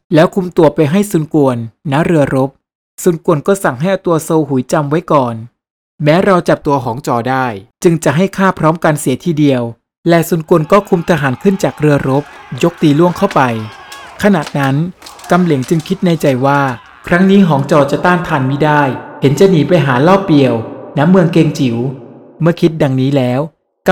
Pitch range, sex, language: 135-175 Hz, male, Thai